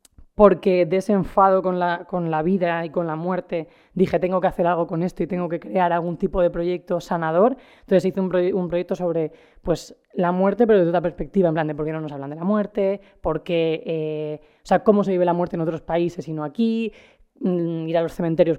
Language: Spanish